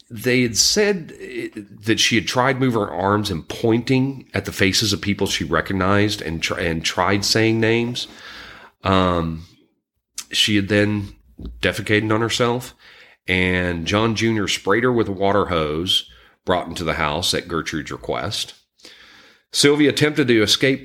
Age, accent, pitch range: 40-59, American, 80-110 Hz